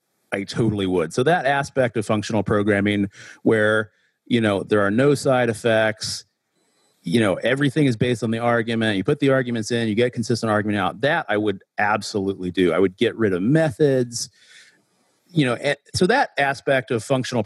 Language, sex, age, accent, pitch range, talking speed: English, male, 40-59, American, 105-130 Hz, 190 wpm